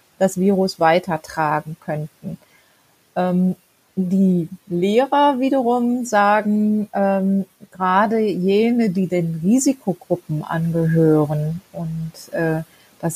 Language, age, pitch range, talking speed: German, 30-49, 175-210 Hz, 85 wpm